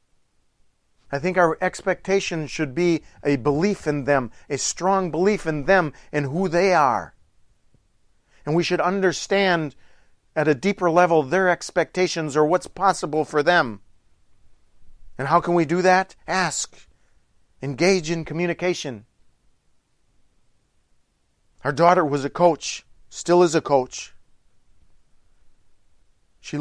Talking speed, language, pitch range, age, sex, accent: 120 wpm, English, 115-175 Hz, 40-59, male, American